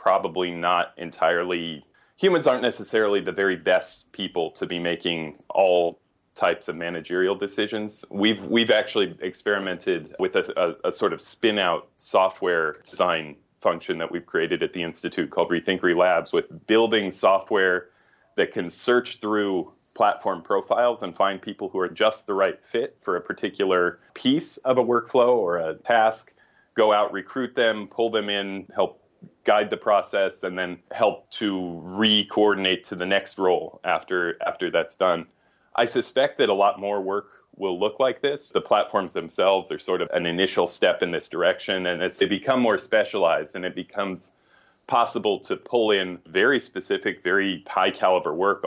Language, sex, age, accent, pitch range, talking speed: English, male, 30-49, American, 90-130 Hz, 165 wpm